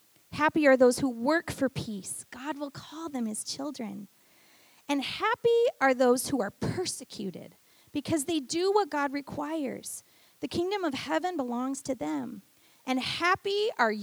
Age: 30-49